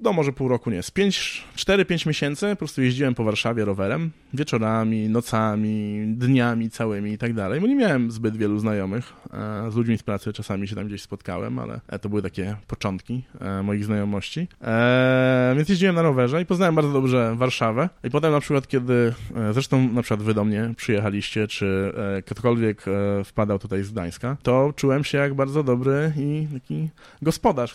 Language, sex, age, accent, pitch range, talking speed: Polish, male, 20-39, native, 105-130 Hz, 170 wpm